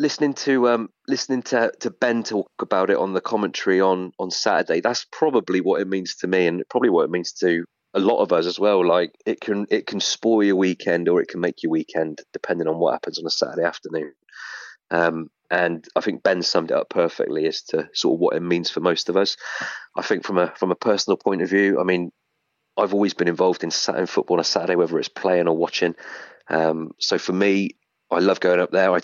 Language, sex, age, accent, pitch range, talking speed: English, male, 30-49, British, 90-100 Hz, 235 wpm